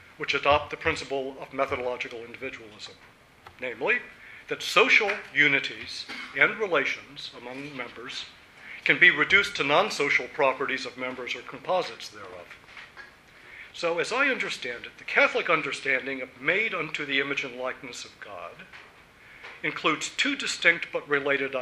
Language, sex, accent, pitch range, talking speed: English, male, American, 130-160 Hz, 135 wpm